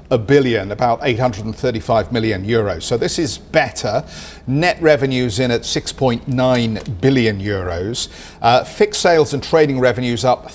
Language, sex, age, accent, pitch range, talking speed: English, male, 50-69, British, 110-140 Hz, 135 wpm